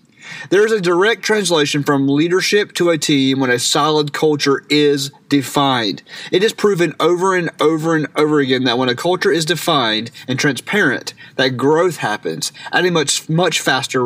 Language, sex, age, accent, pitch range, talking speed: English, male, 30-49, American, 130-165 Hz, 170 wpm